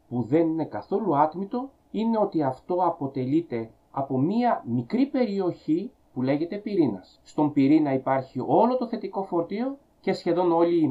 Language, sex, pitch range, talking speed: Greek, male, 135-205 Hz, 150 wpm